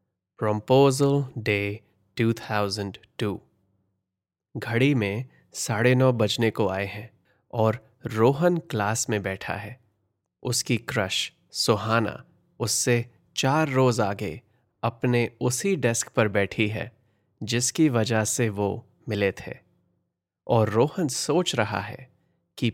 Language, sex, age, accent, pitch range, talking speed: Hindi, male, 20-39, native, 105-130 Hz, 110 wpm